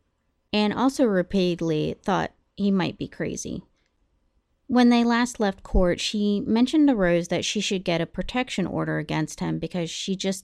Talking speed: 165 wpm